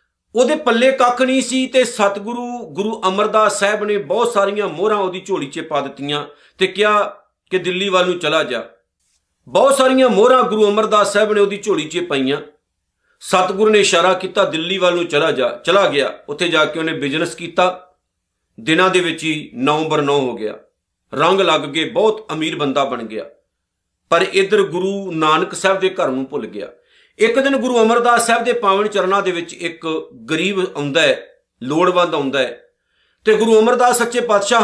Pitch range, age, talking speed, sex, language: 165-220 Hz, 50-69, 180 wpm, male, Punjabi